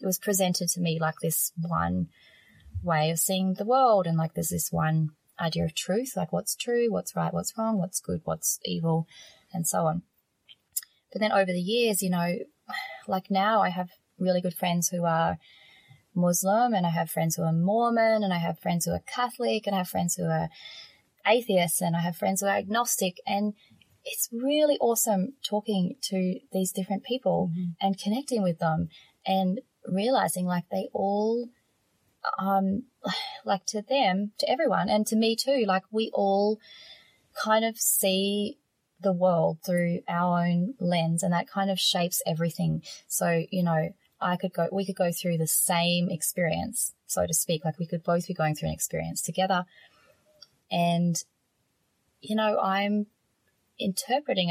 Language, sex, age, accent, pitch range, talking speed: English, female, 20-39, Australian, 170-205 Hz, 175 wpm